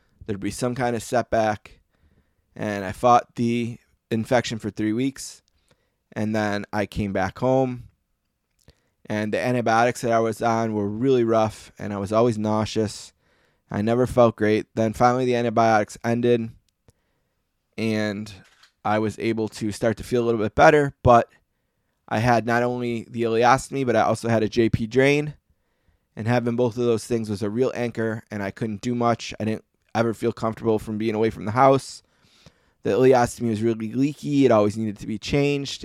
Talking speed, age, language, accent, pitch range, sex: 180 wpm, 20-39, English, American, 105-125 Hz, male